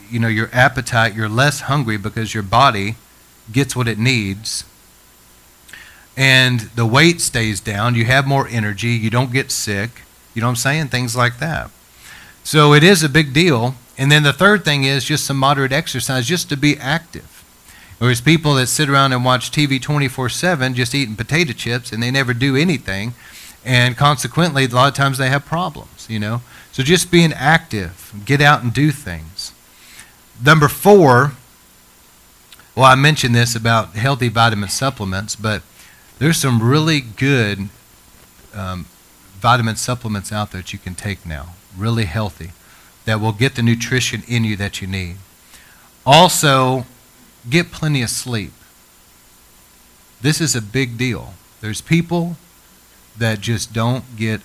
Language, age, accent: English, 40-59, American